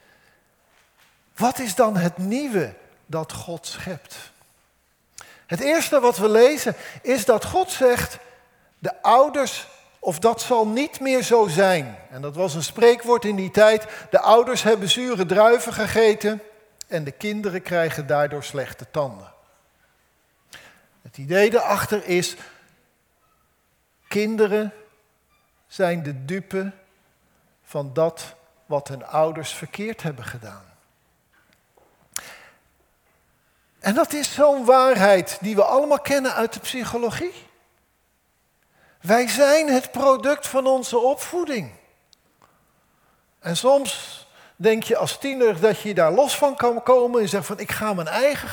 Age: 50-69